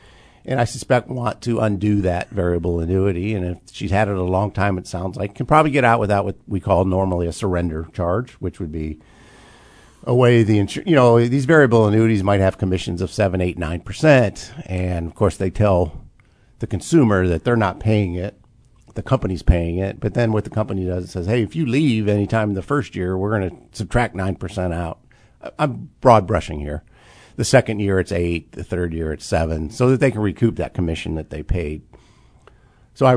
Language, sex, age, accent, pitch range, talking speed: English, male, 50-69, American, 90-115 Hz, 210 wpm